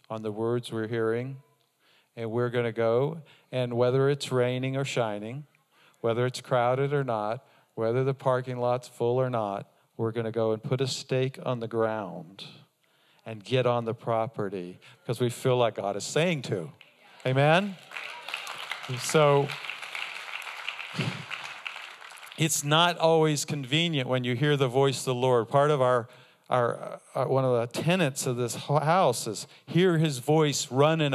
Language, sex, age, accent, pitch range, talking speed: English, male, 50-69, American, 125-155 Hz, 160 wpm